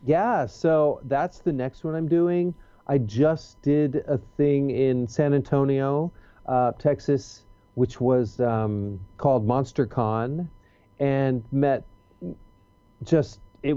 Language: English